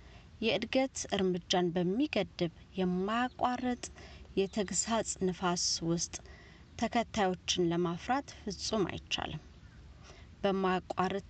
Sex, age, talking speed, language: female, 30-49, 65 wpm, Amharic